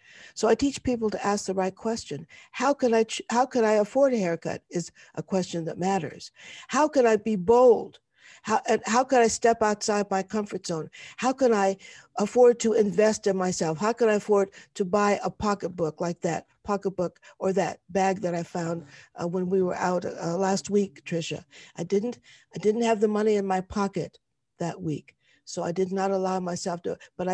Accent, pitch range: American, 175-220 Hz